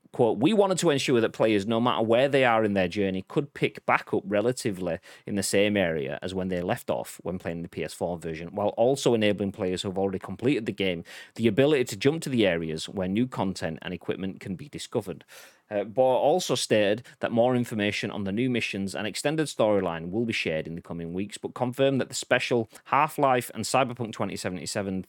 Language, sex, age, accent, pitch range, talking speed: English, male, 30-49, British, 95-125 Hz, 215 wpm